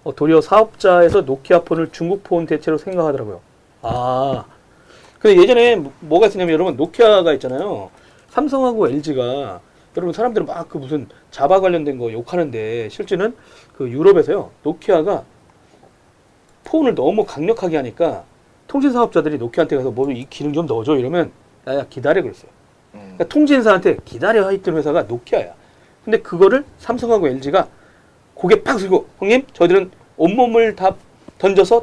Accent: native